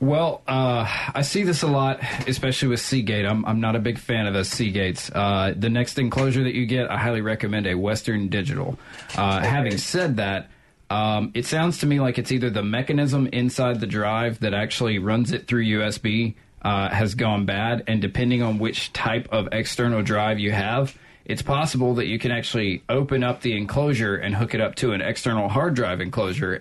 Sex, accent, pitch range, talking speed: male, American, 105-130 Hz, 200 wpm